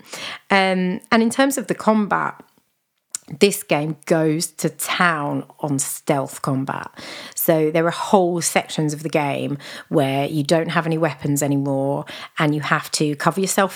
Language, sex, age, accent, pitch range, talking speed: English, female, 30-49, British, 160-205 Hz, 155 wpm